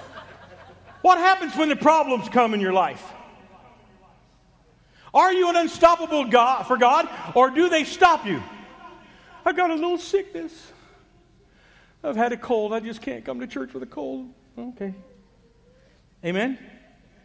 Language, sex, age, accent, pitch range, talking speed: English, male, 50-69, American, 180-285 Hz, 145 wpm